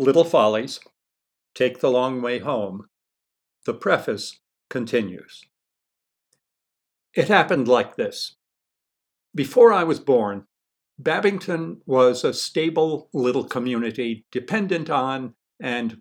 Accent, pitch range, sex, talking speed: American, 115-160 Hz, male, 100 wpm